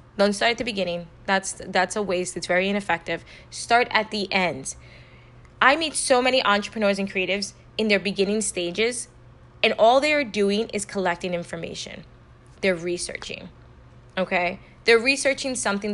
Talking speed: 155 wpm